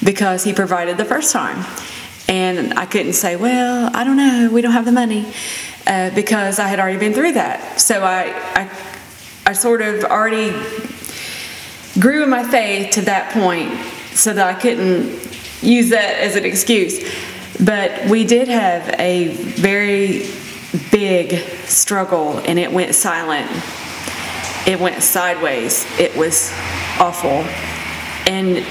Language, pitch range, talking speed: English, 180-215 Hz, 140 wpm